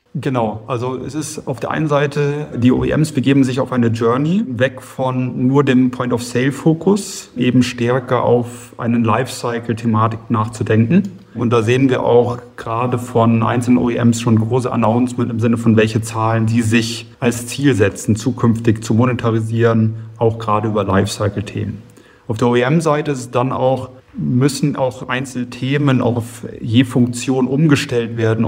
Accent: German